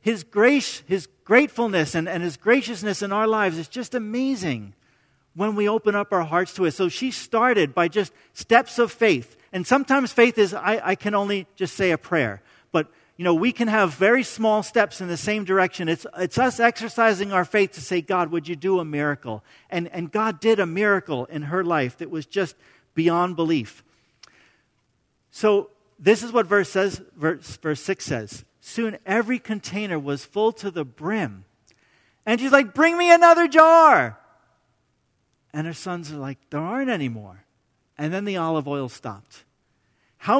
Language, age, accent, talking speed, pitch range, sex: English, 50-69, American, 185 wpm, 160-230 Hz, male